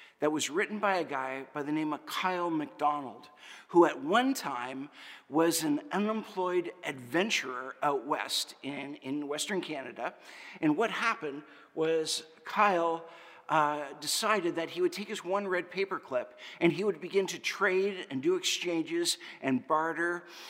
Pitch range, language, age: 160-215 Hz, English, 50-69